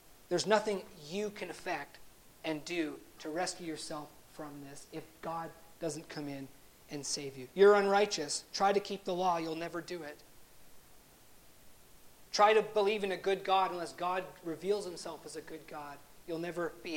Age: 40-59